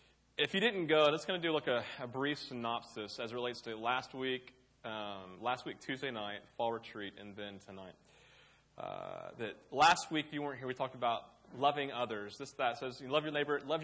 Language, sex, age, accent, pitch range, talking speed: English, male, 30-49, American, 110-135 Hz, 215 wpm